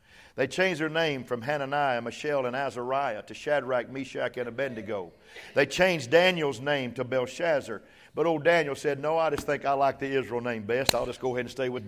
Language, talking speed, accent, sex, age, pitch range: English, 205 wpm, American, male, 50-69, 140-170 Hz